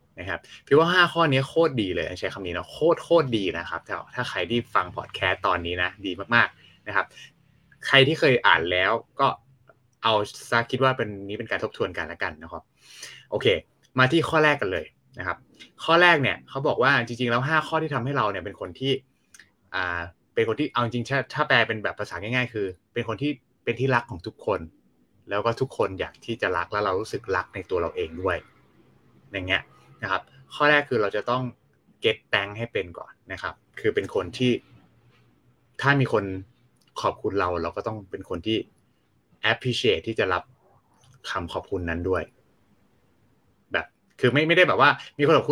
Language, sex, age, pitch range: Thai, male, 20-39, 95-135 Hz